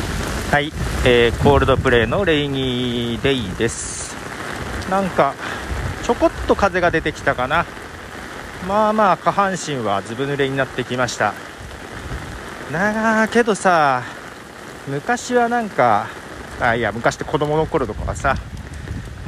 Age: 40-59